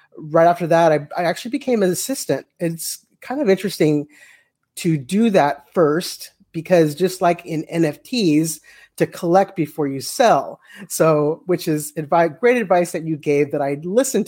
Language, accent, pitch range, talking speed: English, American, 150-185 Hz, 165 wpm